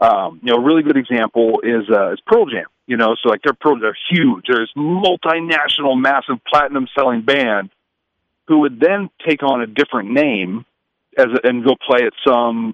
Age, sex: 40-59, male